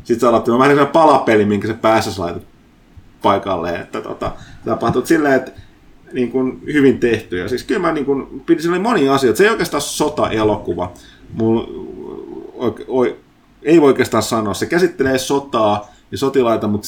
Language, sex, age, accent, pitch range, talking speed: Finnish, male, 30-49, native, 105-130 Hz, 155 wpm